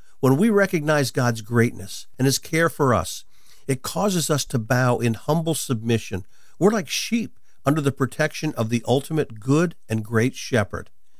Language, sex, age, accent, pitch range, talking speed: English, male, 50-69, American, 120-165 Hz, 165 wpm